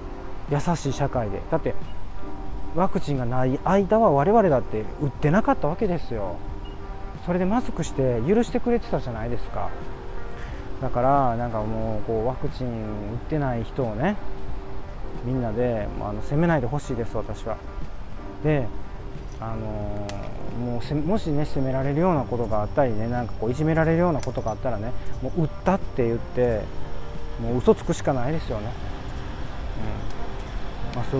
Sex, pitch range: male, 105-150 Hz